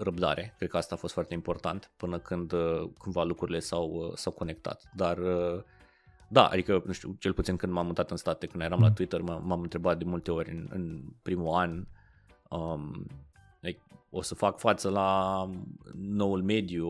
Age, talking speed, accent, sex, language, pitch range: 20-39, 175 wpm, native, male, Romanian, 85-100 Hz